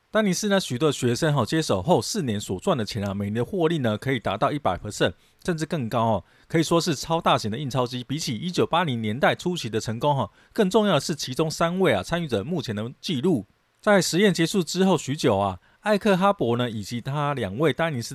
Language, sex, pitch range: Chinese, male, 115-170 Hz